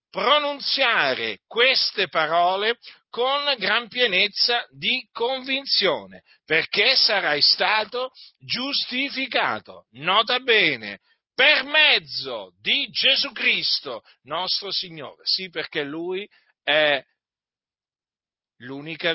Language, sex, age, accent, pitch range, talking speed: Italian, male, 50-69, native, 145-235 Hz, 80 wpm